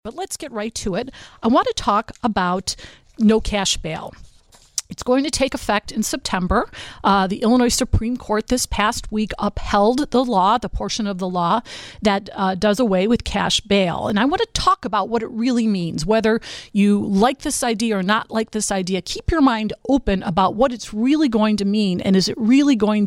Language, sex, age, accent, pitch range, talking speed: English, female, 40-59, American, 195-240 Hz, 210 wpm